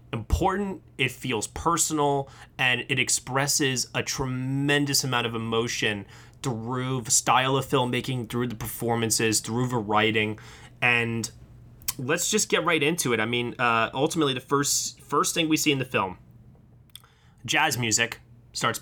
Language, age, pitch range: English, 20-39, 115-155 Hz